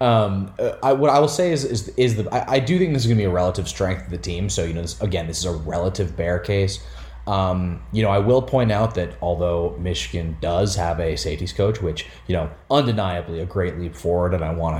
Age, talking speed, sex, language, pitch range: 20-39, 250 wpm, male, English, 85-120 Hz